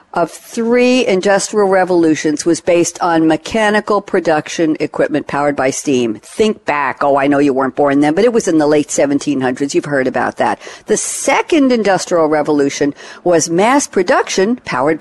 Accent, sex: American, female